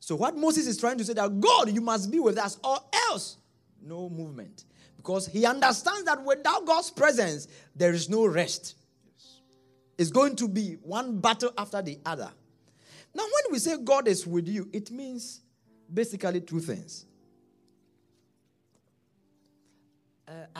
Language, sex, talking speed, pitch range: English, male, 150 wpm, 135-220 Hz